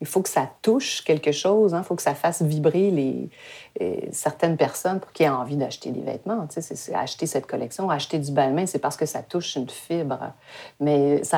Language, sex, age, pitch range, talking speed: French, female, 40-59, 145-185 Hz, 215 wpm